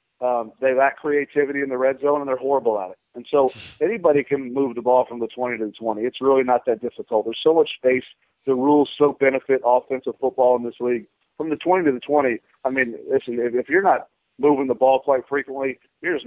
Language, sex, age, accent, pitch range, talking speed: English, male, 40-59, American, 125-145 Hz, 230 wpm